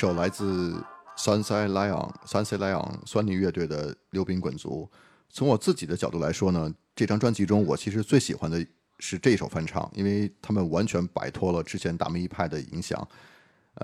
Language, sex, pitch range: Chinese, male, 85-105 Hz